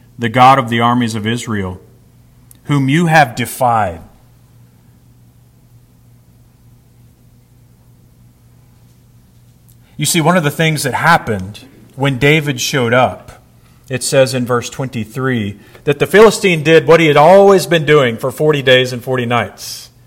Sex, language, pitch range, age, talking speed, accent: male, English, 120-140 Hz, 40-59, 130 wpm, American